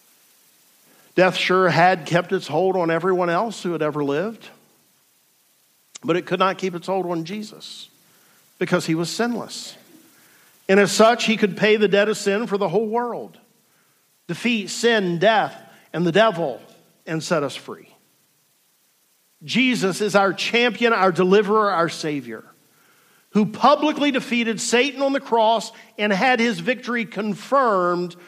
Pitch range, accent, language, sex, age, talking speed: 170-230 Hz, American, English, male, 50-69, 150 wpm